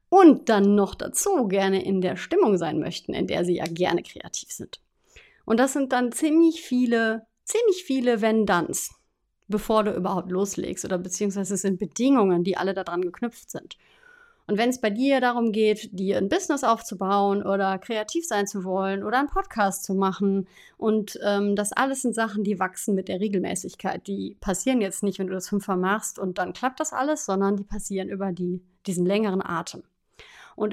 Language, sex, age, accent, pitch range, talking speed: German, female, 30-49, German, 190-225 Hz, 185 wpm